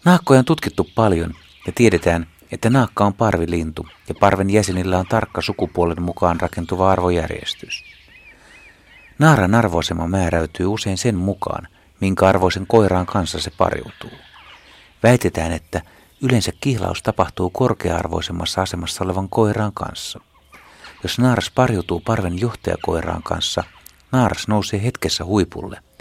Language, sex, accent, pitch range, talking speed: Finnish, male, native, 85-105 Hz, 120 wpm